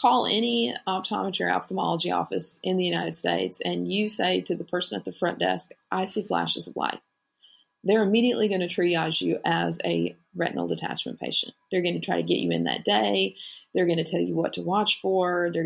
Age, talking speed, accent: 40-59, 215 wpm, American